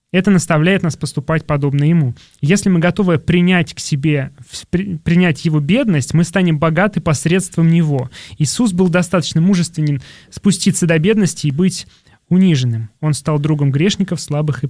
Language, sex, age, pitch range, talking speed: Russian, male, 20-39, 140-175 Hz, 145 wpm